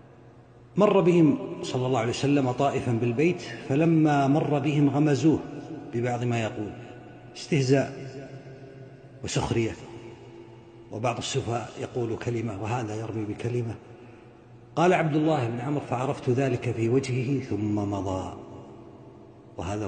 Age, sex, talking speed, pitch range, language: 50-69, male, 110 wpm, 115-140 Hz, Arabic